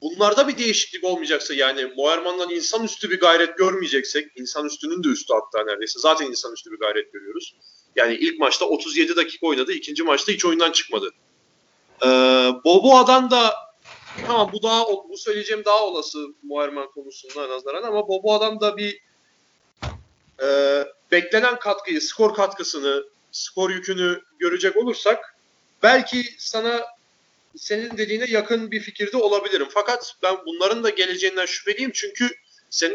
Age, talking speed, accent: 40-59, 140 wpm, native